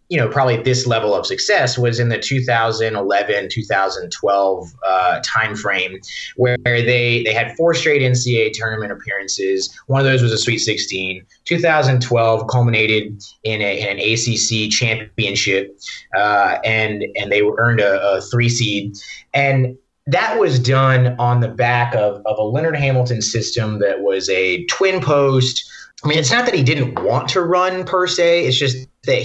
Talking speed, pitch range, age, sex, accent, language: 160 wpm, 115-140 Hz, 30-49, male, American, English